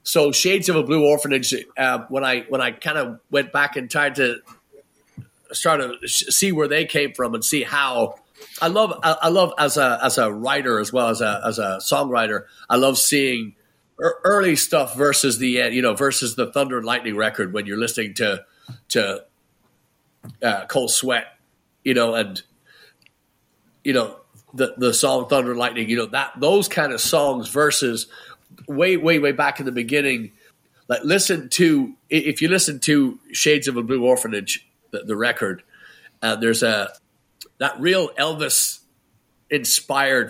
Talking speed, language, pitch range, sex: 180 wpm, English, 125-160 Hz, male